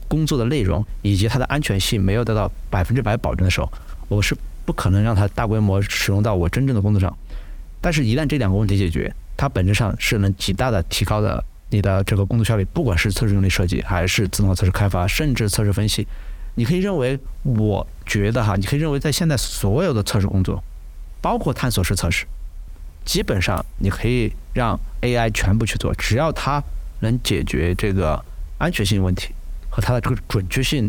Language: Chinese